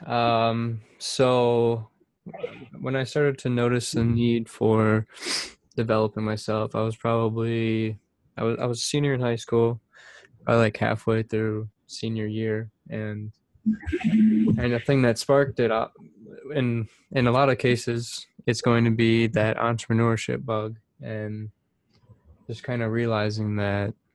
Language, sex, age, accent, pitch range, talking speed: English, male, 20-39, American, 110-125 Hz, 140 wpm